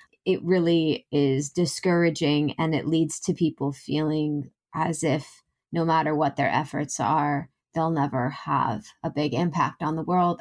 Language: English